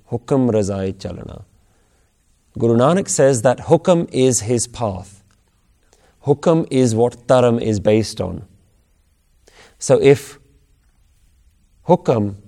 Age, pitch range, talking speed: 30-49, 85-120 Hz, 90 wpm